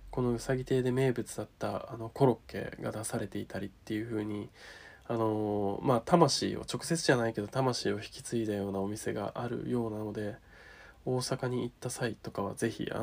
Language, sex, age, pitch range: Japanese, male, 20-39, 100-120 Hz